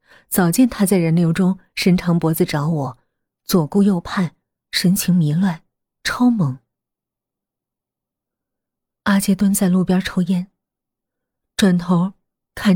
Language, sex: Chinese, female